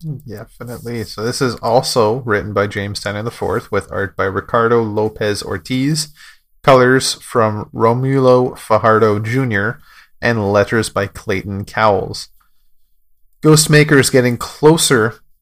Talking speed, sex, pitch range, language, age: 115 wpm, male, 105-130 Hz, English, 30-49